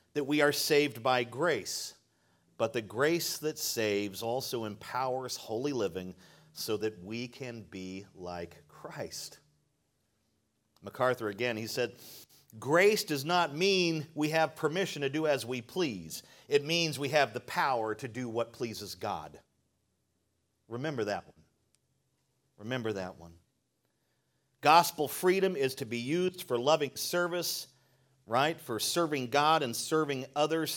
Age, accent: 40-59, American